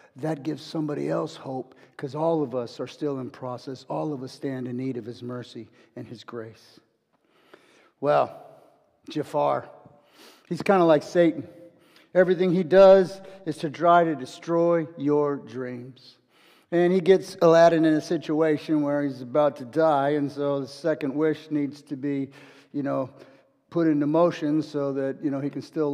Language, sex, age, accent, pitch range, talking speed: English, male, 50-69, American, 145-190 Hz, 170 wpm